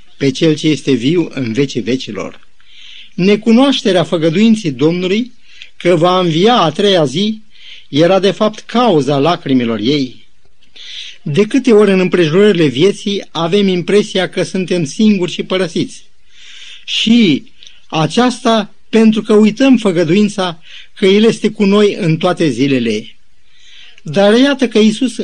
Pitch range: 155-215 Hz